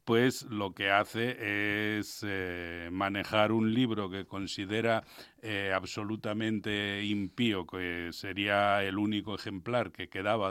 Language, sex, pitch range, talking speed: Spanish, male, 95-115 Hz, 120 wpm